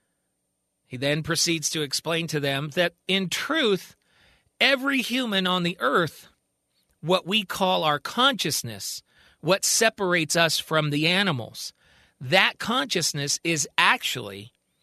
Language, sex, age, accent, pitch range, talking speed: English, male, 40-59, American, 140-180 Hz, 120 wpm